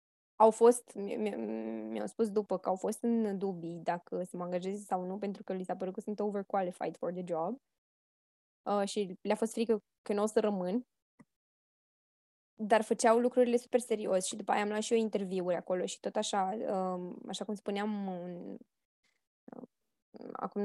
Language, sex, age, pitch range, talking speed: Romanian, female, 10-29, 190-225 Hz, 175 wpm